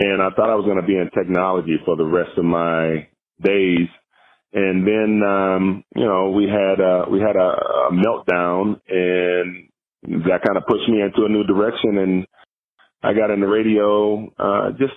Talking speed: 190 wpm